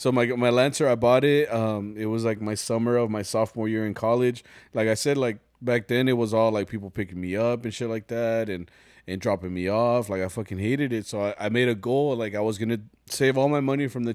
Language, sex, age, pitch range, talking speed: English, male, 20-39, 105-130 Hz, 265 wpm